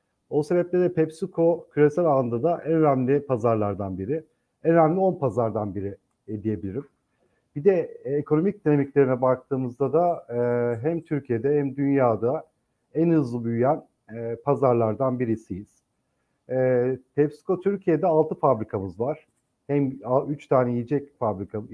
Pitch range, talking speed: 115-150 Hz, 115 wpm